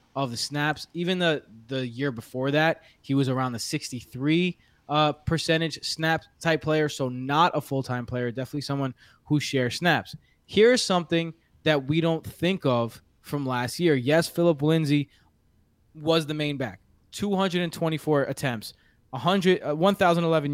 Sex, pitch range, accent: male, 135-175 Hz, American